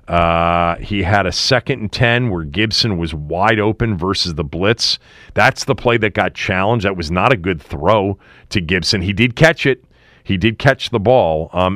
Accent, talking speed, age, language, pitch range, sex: American, 200 wpm, 40-59, English, 95-130 Hz, male